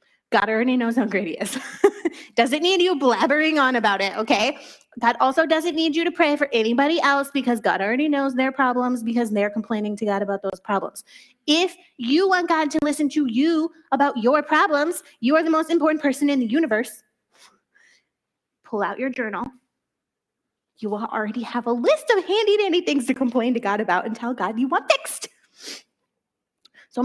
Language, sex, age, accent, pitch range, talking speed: English, female, 20-39, American, 225-320 Hz, 185 wpm